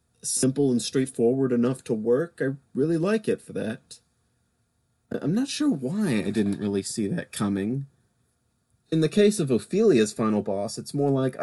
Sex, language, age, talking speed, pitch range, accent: male, English, 30-49, 170 wpm, 105-130 Hz, American